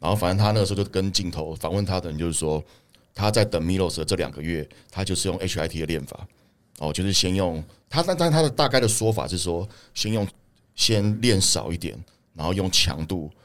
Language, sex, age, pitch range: Chinese, male, 30-49, 80-105 Hz